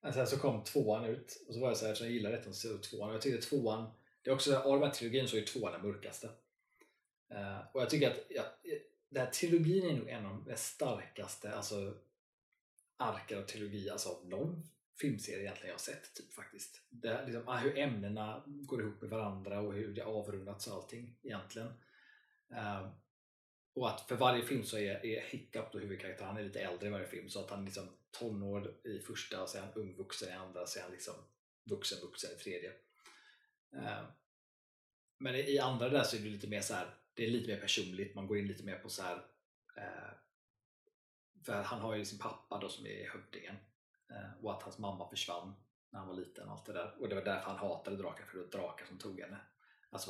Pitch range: 100-130 Hz